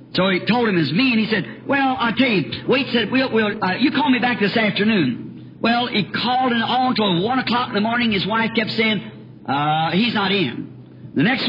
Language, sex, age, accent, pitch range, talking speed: English, male, 50-69, American, 190-240 Hz, 235 wpm